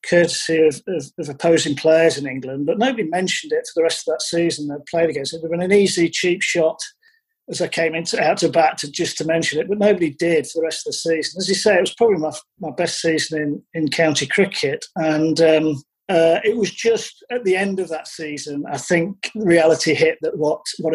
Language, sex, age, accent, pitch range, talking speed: English, male, 40-59, British, 155-195 Hz, 235 wpm